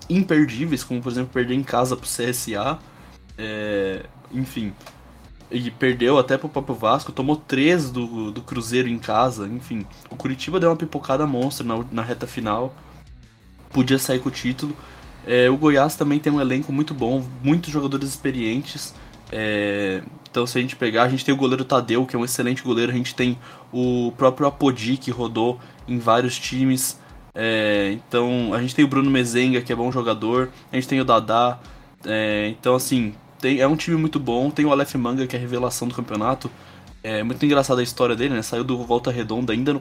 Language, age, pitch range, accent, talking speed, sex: Portuguese, 10-29, 120-140 Hz, Brazilian, 195 wpm, male